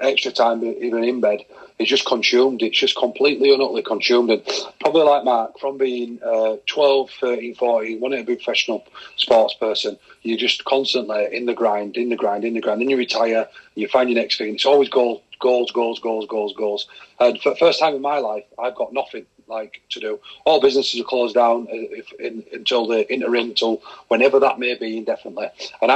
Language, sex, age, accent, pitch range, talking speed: English, male, 40-59, British, 115-150 Hz, 210 wpm